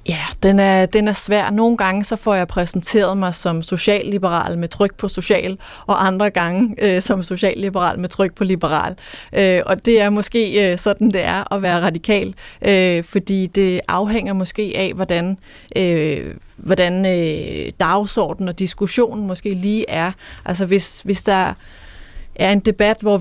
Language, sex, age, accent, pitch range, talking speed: Danish, female, 30-49, native, 180-200 Hz, 170 wpm